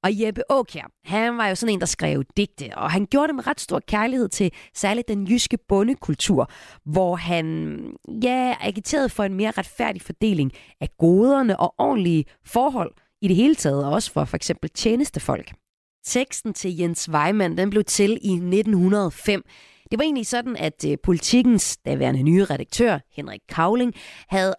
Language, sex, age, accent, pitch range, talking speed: Danish, female, 30-49, native, 170-225 Hz, 165 wpm